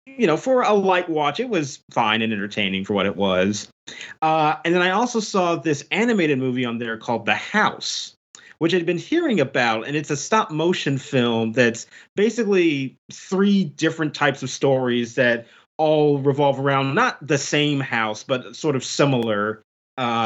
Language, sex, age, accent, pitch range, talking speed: English, male, 30-49, American, 125-170 Hz, 180 wpm